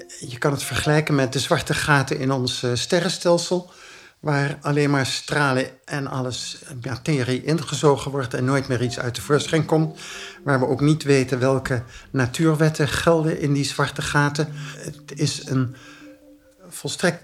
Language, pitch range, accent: Dutch, 130-165 Hz, Dutch